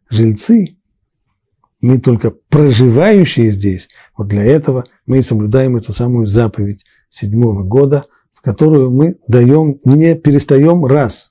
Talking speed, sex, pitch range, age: 120 wpm, male, 105-145 Hz, 40-59